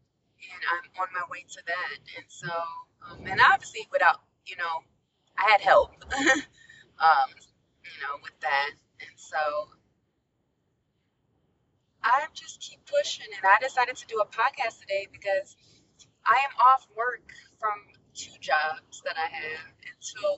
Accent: American